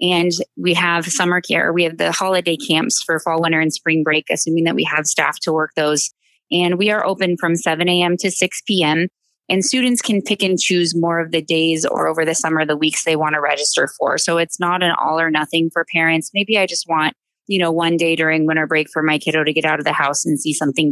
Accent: American